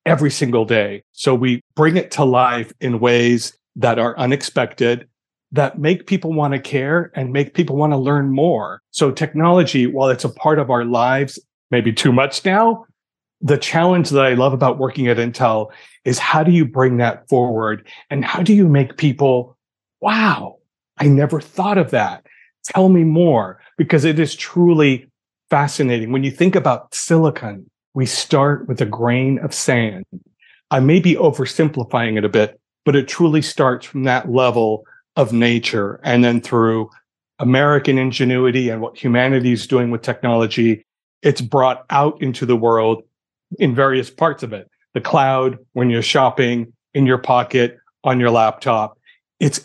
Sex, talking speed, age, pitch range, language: male, 170 wpm, 40-59, 120-150 Hz, English